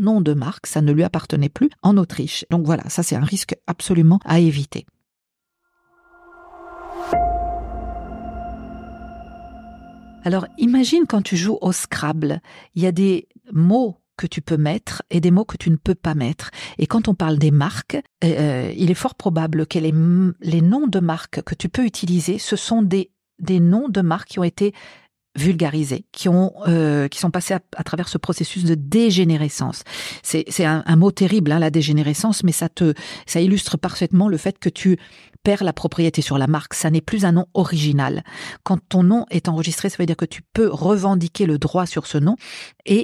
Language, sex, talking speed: French, female, 195 wpm